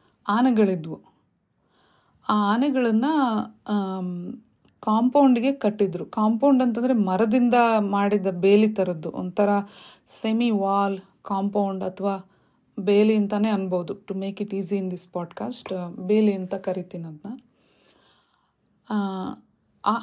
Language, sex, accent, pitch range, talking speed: Kannada, female, native, 190-230 Hz, 90 wpm